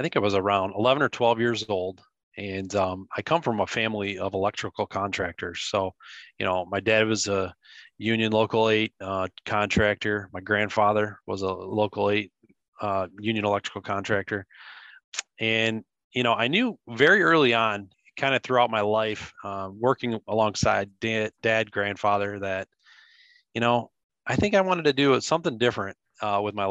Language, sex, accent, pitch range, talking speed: English, male, American, 100-120 Hz, 165 wpm